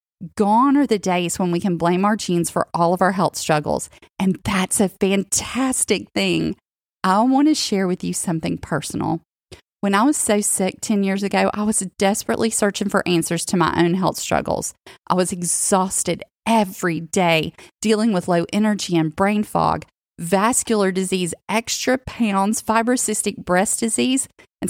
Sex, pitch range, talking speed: female, 180-220 Hz, 165 wpm